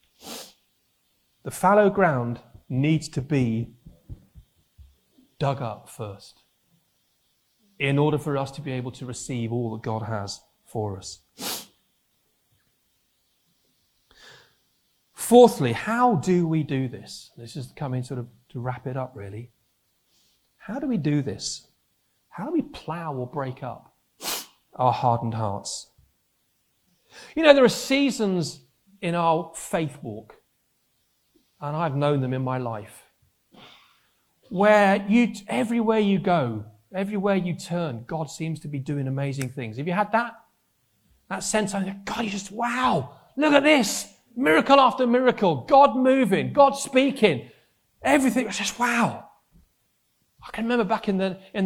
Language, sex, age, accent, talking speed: English, male, 40-59, British, 140 wpm